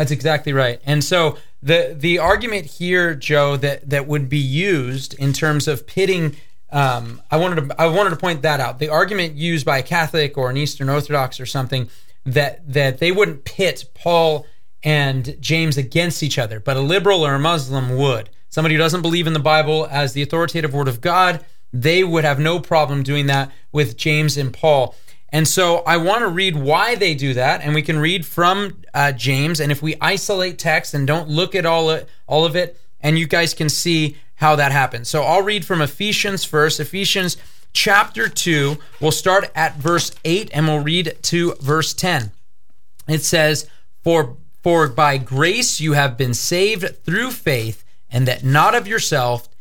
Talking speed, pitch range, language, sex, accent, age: 190 wpm, 140-170 Hz, English, male, American, 30-49